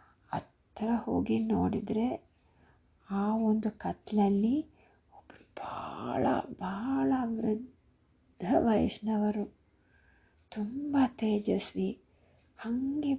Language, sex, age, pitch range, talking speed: Kannada, female, 50-69, 190-225 Hz, 65 wpm